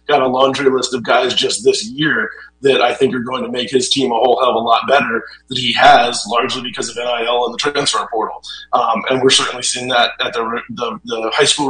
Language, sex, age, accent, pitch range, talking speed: English, male, 30-49, American, 120-135 Hz, 250 wpm